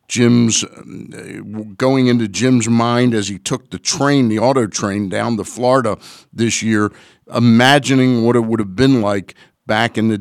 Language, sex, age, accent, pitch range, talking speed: English, male, 50-69, American, 95-125 Hz, 165 wpm